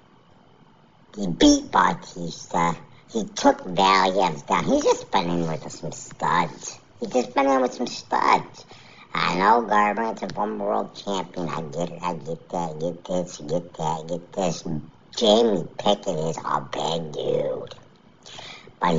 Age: 50-69